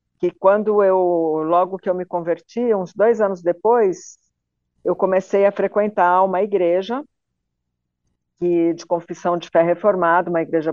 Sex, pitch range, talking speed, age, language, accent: female, 175-225 Hz, 140 wpm, 50-69, Portuguese, Brazilian